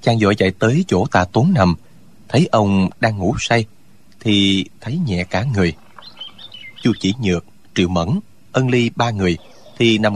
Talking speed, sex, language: 170 wpm, male, Vietnamese